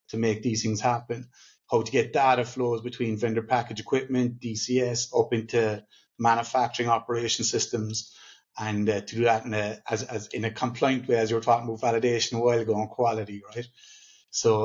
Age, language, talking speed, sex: 30-49, English, 185 wpm, male